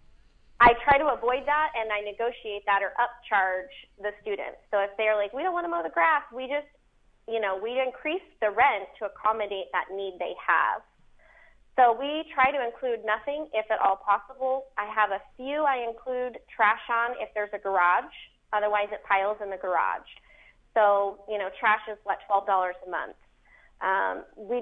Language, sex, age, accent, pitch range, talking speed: English, female, 30-49, American, 200-245 Hz, 190 wpm